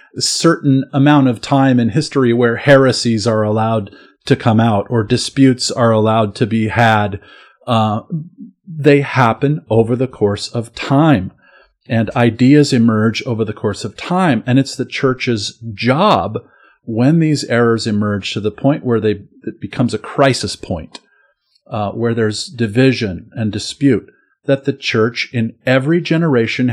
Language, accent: English, American